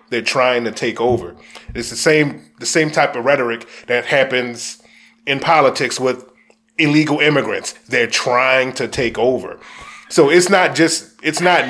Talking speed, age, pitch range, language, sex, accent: 160 wpm, 30-49, 125-160 Hz, English, male, American